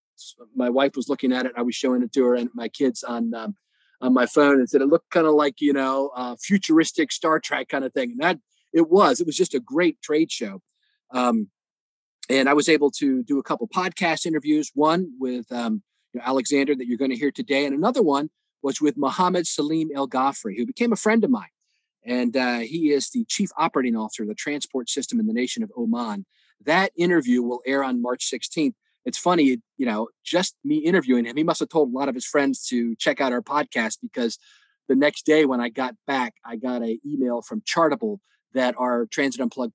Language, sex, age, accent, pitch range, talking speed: English, male, 40-59, American, 130-185 Hz, 225 wpm